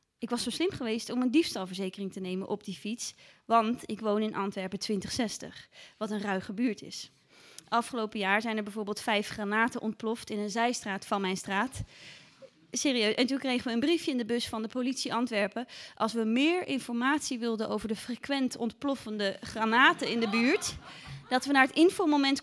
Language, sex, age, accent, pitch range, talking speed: Dutch, female, 20-39, Dutch, 210-265 Hz, 185 wpm